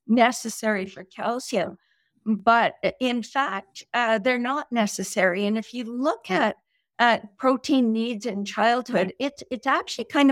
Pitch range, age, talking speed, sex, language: 205-260 Hz, 50-69, 135 wpm, female, English